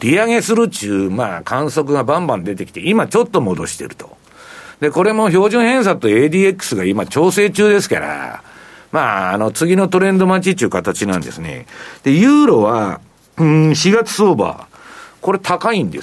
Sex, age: male, 60-79